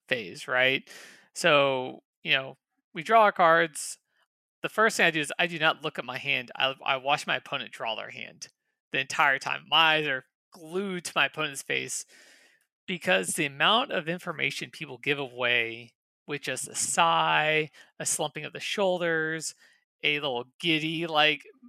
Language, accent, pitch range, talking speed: English, American, 140-170 Hz, 170 wpm